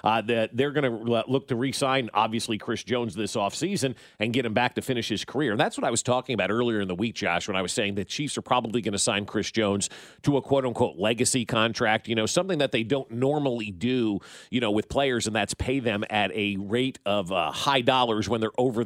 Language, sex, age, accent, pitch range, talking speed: English, male, 40-59, American, 105-130 Hz, 245 wpm